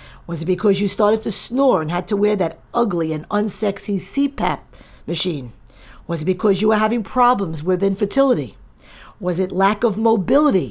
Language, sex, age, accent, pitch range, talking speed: English, female, 50-69, American, 170-215 Hz, 175 wpm